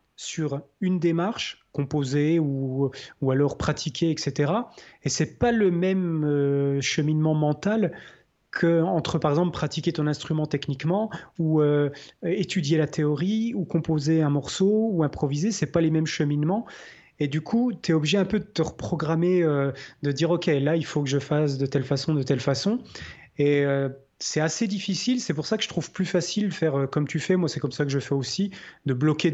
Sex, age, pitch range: male, 30-49, 140-175 Hz